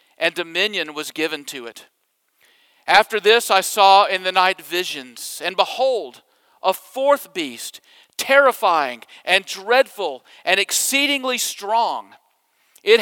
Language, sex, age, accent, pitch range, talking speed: English, male, 50-69, American, 175-240 Hz, 120 wpm